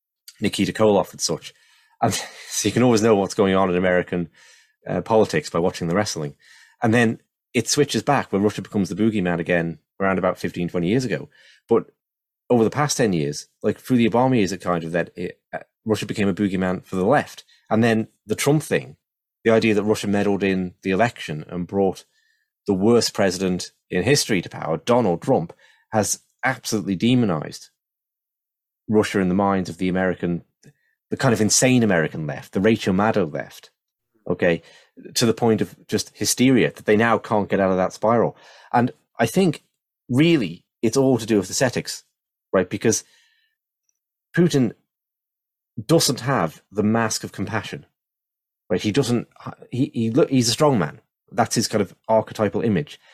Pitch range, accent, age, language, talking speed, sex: 95-120 Hz, British, 30-49, English, 175 wpm, male